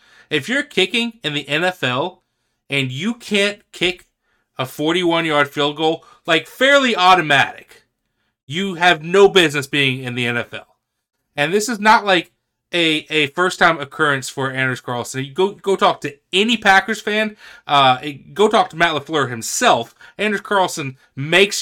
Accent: American